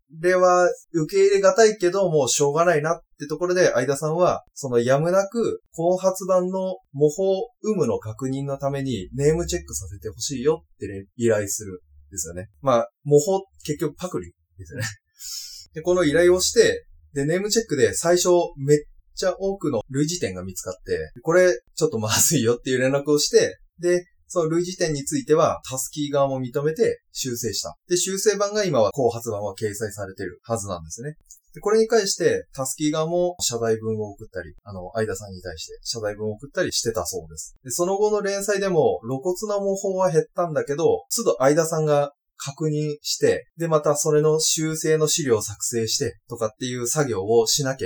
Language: Japanese